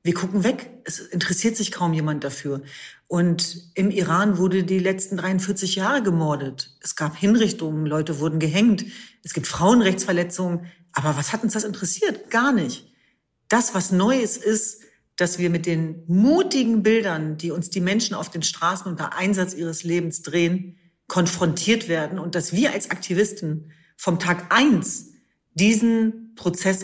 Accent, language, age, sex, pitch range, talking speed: German, German, 40-59, female, 175-220 Hz, 155 wpm